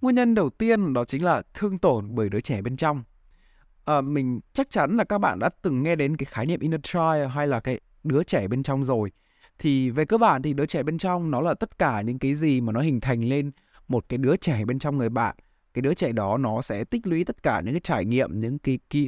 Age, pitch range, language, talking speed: 20-39, 115-170 Hz, Vietnamese, 265 wpm